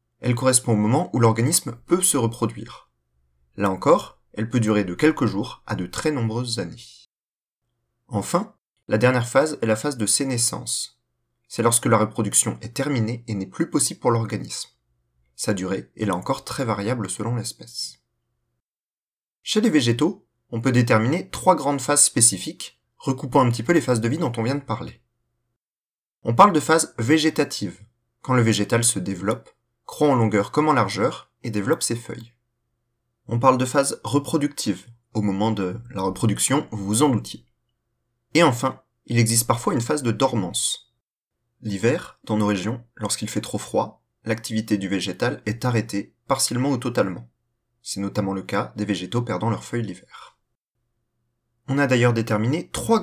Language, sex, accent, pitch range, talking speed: French, male, French, 105-130 Hz, 170 wpm